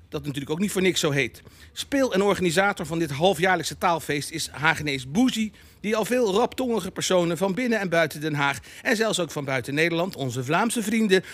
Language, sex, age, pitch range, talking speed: Dutch, male, 50-69, 150-210 Hz, 200 wpm